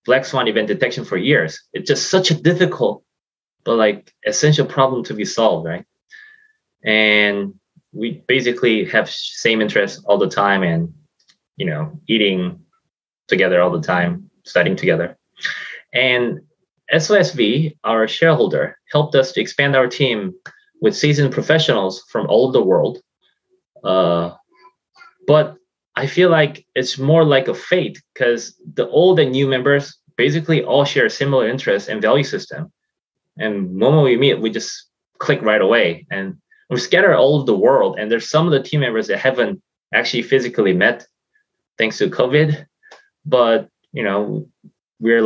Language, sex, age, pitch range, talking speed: English, male, 20-39, 120-185 Hz, 155 wpm